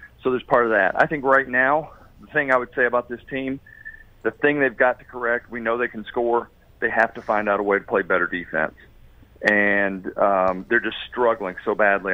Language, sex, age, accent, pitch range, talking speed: English, male, 40-59, American, 105-135 Hz, 225 wpm